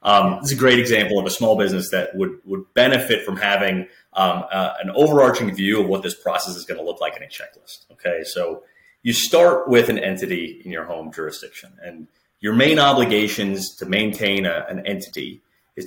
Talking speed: 205 wpm